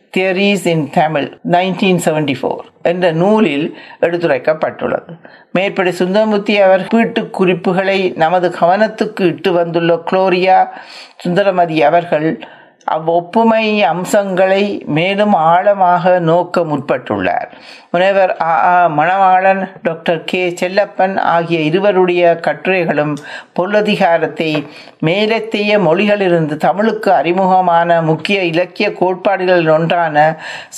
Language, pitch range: Tamil, 165-200 Hz